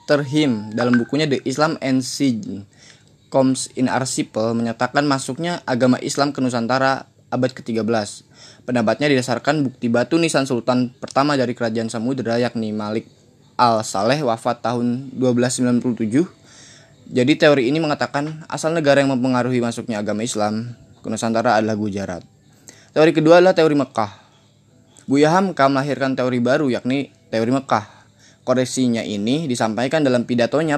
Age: 20-39